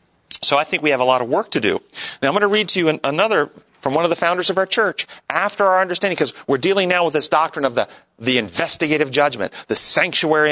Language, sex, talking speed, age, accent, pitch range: English, male, 250 wpm, 40-59, American, 135-185 Hz